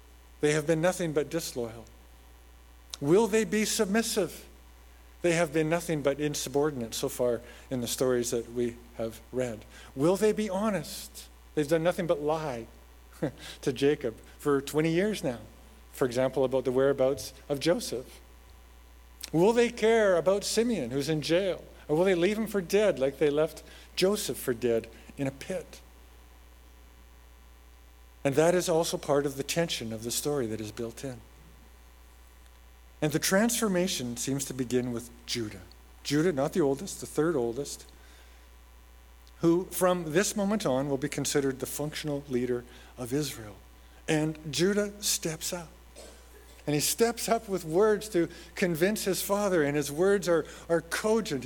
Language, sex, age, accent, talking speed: English, male, 50-69, American, 155 wpm